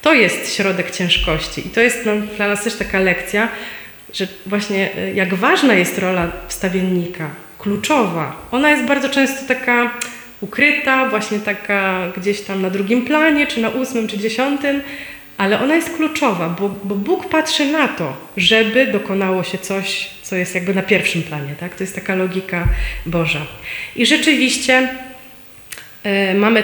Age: 30-49